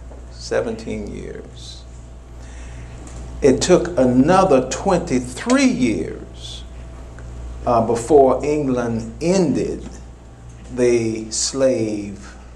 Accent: American